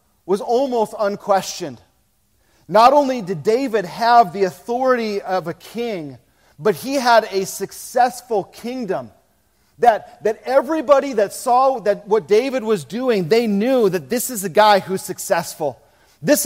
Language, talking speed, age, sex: English, 140 wpm, 40-59, male